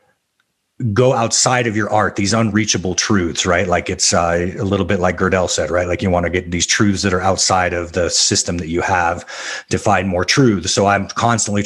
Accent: American